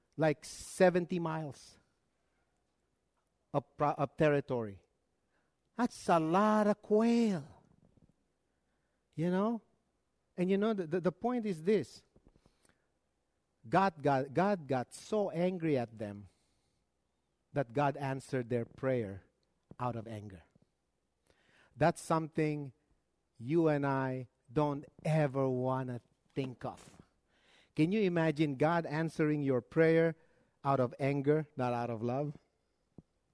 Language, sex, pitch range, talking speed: English, male, 130-195 Hz, 115 wpm